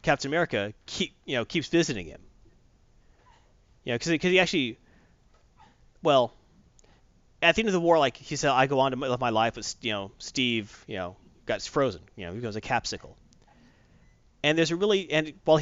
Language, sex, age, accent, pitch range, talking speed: English, male, 30-49, American, 110-155 Hz, 190 wpm